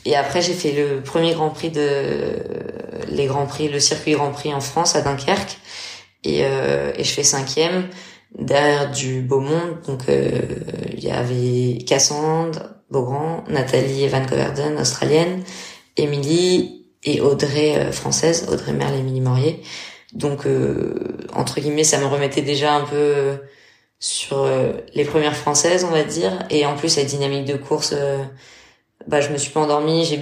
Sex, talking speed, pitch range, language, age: female, 170 wpm, 135-160 Hz, French, 20-39